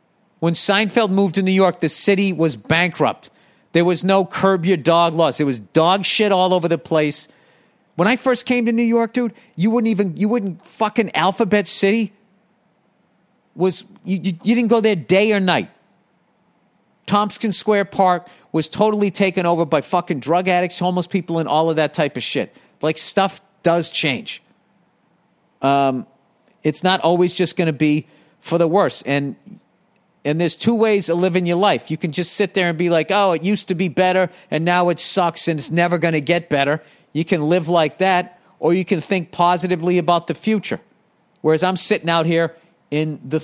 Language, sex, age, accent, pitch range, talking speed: English, male, 40-59, American, 160-195 Hz, 190 wpm